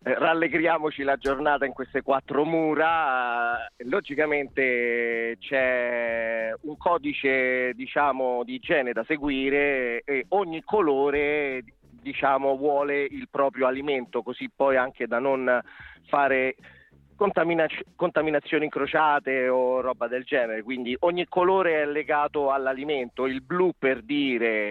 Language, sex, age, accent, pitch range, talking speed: Italian, male, 30-49, native, 120-150 Hz, 110 wpm